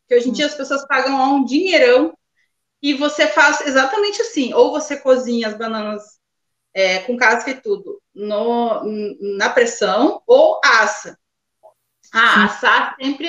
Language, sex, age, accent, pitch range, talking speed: Portuguese, female, 30-49, Brazilian, 235-345 Hz, 150 wpm